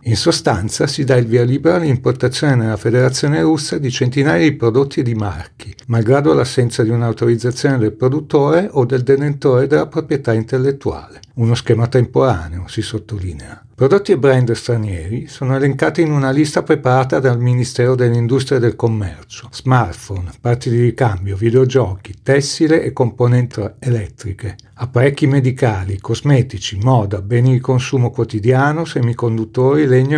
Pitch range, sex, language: 115-140 Hz, male, Italian